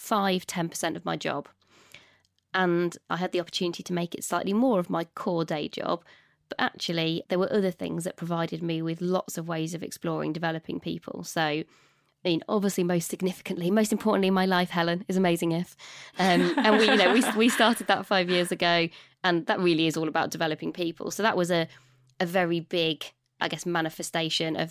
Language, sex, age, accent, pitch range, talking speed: English, female, 20-39, British, 165-205 Hz, 200 wpm